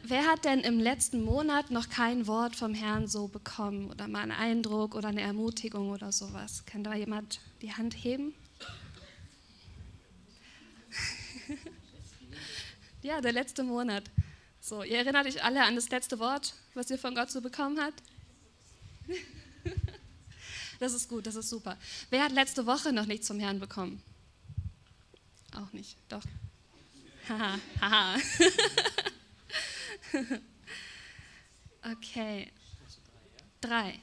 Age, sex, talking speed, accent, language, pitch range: 20-39, female, 125 wpm, German, German, 195-255 Hz